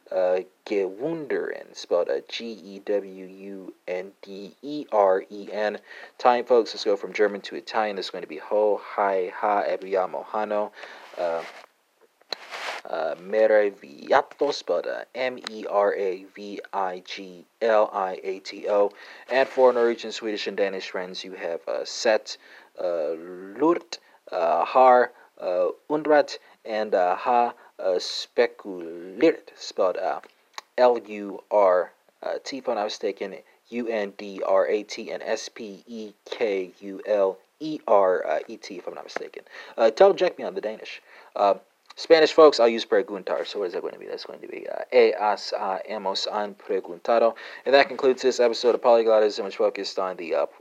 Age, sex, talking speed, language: 40-59, male, 120 wpm, English